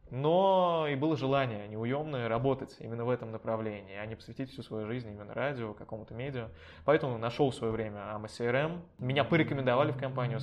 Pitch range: 115-140 Hz